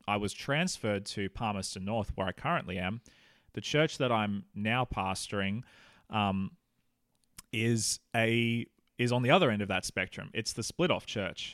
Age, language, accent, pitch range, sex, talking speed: 20-39, English, Australian, 100-125 Hz, male, 160 wpm